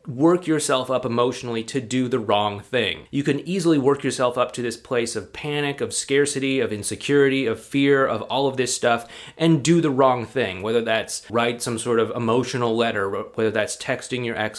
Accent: American